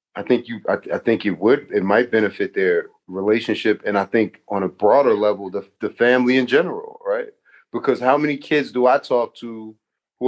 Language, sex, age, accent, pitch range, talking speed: English, male, 30-49, American, 120-145 Hz, 205 wpm